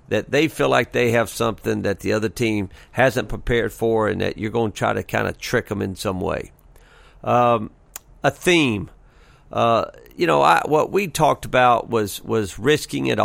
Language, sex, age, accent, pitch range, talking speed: English, male, 50-69, American, 110-140 Hz, 195 wpm